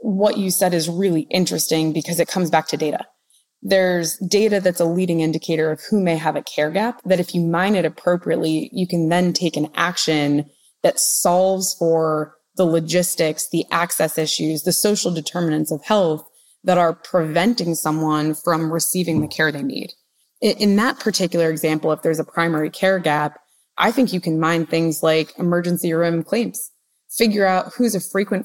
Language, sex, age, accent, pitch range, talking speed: English, female, 20-39, American, 160-185 Hz, 180 wpm